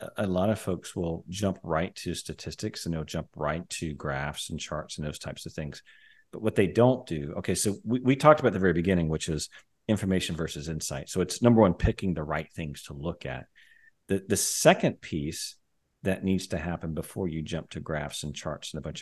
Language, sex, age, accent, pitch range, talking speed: English, male, 40-59, American, 75-95 Hz, 220 wpm